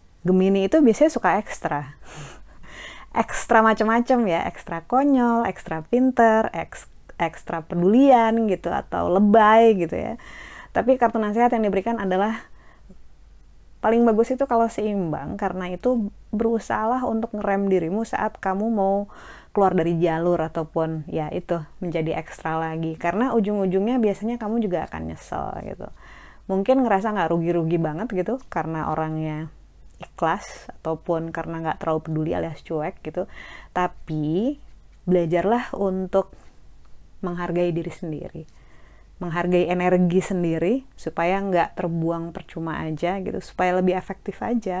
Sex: female